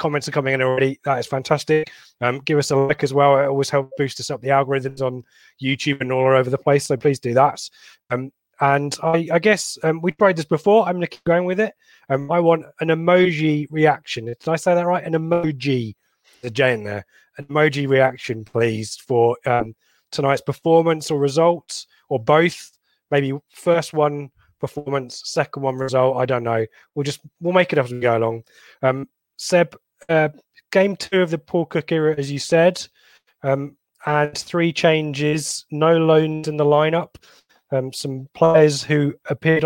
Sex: male